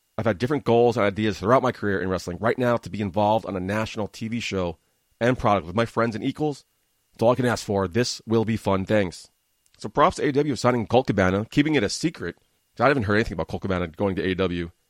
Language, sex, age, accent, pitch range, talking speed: English, male, 30-49, American, 100-125 Hz, 245 wpm